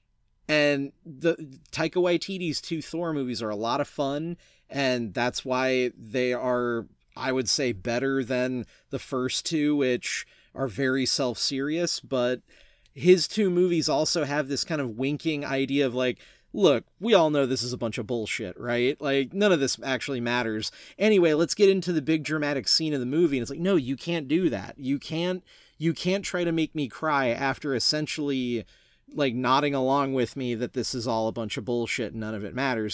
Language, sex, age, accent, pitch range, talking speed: English, male, 30-49, American, 120-155 Hz, 195 wpm